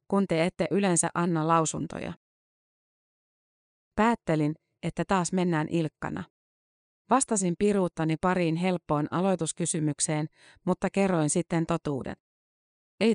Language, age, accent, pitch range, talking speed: Finnish, 30-49, native, 155-190 Hz, 95 wpm